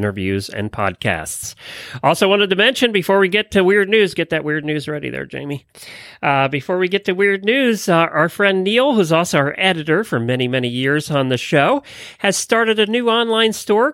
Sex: male